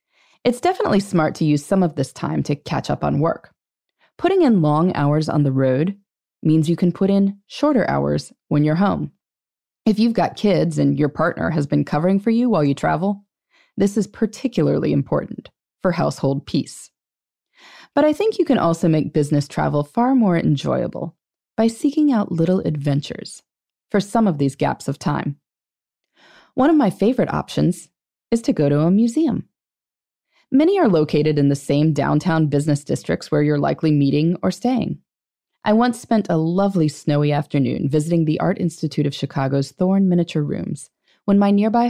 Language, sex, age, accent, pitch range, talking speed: English, female, 20-39, American, 150-210 Hz, 175 wpm